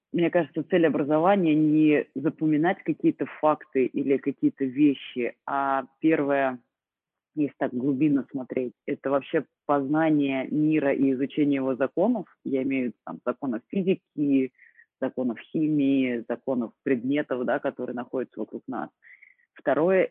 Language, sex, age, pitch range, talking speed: Russian, female, 30-49, 135-165 Hz, 120 wpm